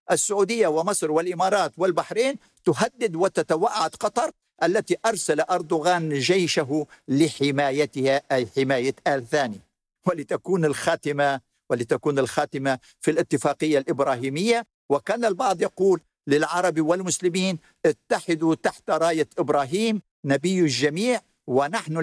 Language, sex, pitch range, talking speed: Arabic, male, 130-170 Hz, 95 wpm